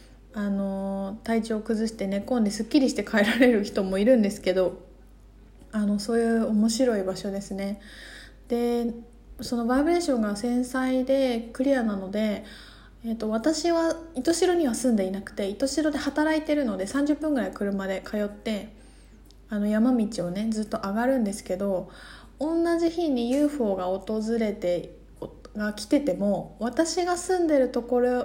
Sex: female